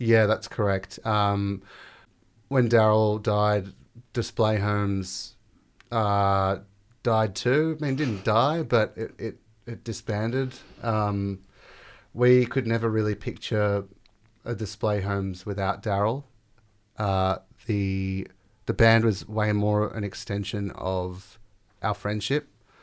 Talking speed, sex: 120 wpm, male